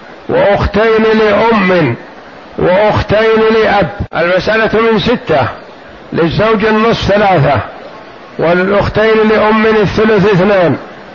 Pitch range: 190-220 Hz